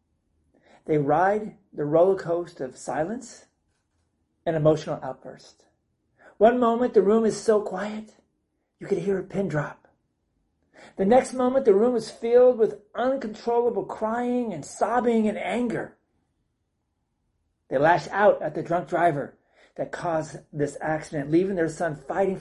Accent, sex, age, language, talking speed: American, male, 40-59, English, 135 wpm